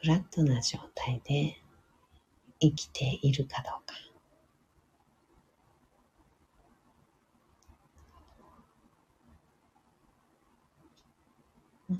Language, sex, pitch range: Japanese, female, 105-150 Hz